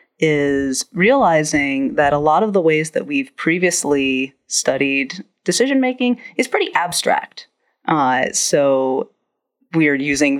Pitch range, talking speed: 140-225 Hz, 120 wpm